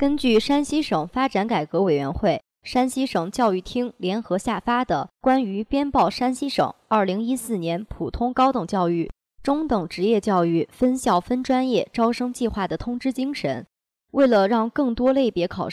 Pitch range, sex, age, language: 185-255 Hz, male, 20-39, Chinese